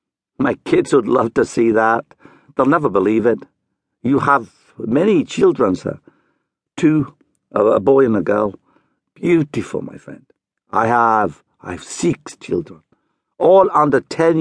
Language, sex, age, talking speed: English, male, 60-79, 140 wpm